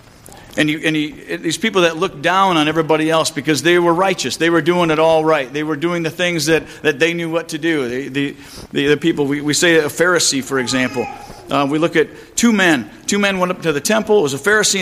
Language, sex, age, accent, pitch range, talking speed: English, male, 50-69, American, 130-180 Hz, 255 wpm